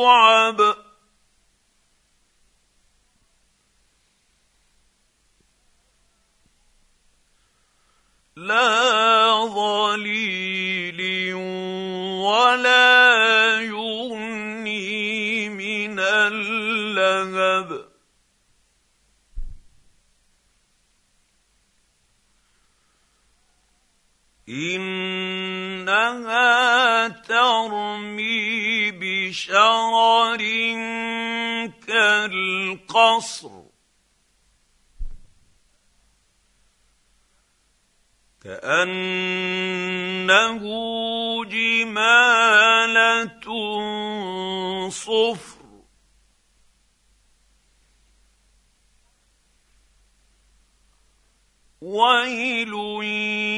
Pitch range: 190-225 Hz